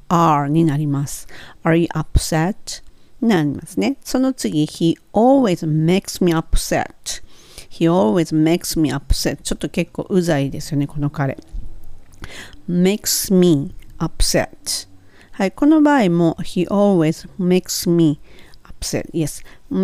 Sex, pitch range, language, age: female, 155-195 Hz, Japanese, 50-69